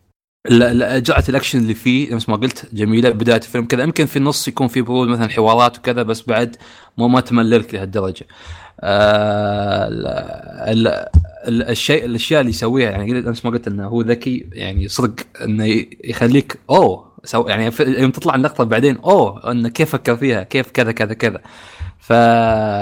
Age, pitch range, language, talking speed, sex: 20-39, 105-135 Hz, Arabic, 155 wpm, male